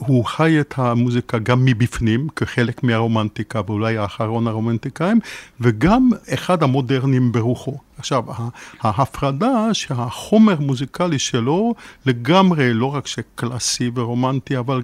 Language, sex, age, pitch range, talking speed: Hebrew, male, 50-69, 125-155 Hz, 105 wpm